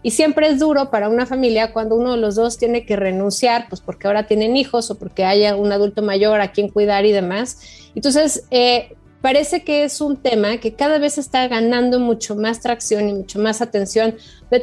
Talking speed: 210 wpm